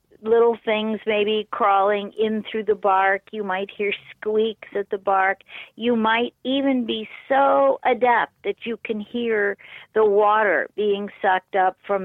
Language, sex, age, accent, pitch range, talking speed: English, female, 50-69, American, 190-245 Hz, 155 wpm